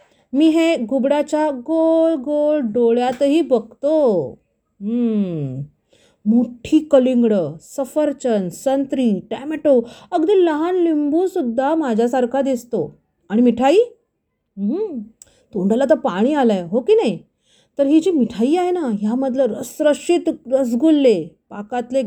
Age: 40-59